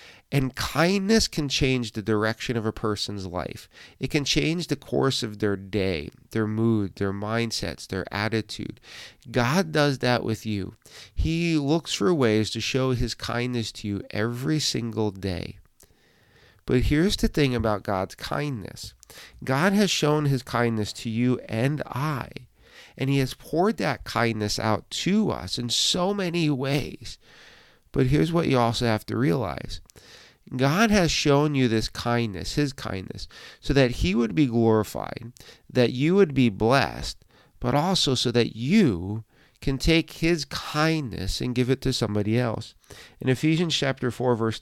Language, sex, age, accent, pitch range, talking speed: English, male, 50-69, American, 110-140 Hz, 160 wpm